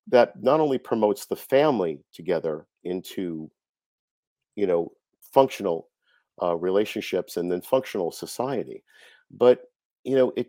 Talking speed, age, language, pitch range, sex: 120 wpm, 50-69, English, 90-110 Hz, male